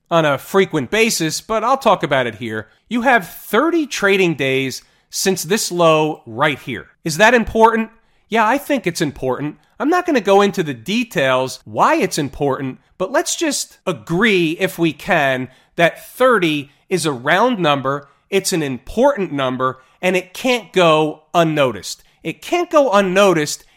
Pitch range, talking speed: 155-200 Hz, 165 wpm